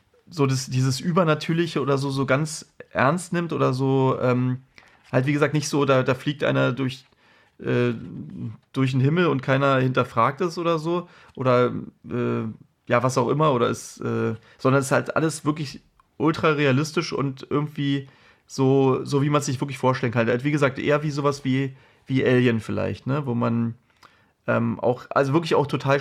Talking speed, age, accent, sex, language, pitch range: 185 wpm, 30-49, German, male, German, 130-160 Hz